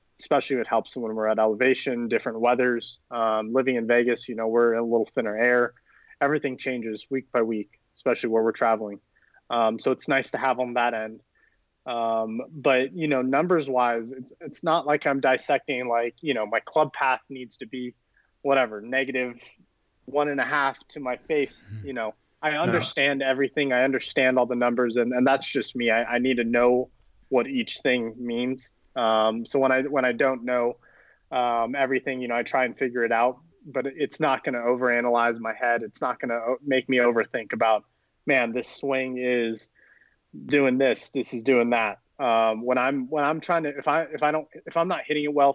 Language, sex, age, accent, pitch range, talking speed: English, male, 20-39, American, 115-135 Hz, 205 wpm